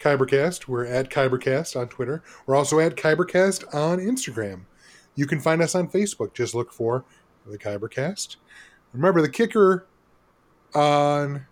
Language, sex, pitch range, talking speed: English, male, 120-160 Hz, 140 wpm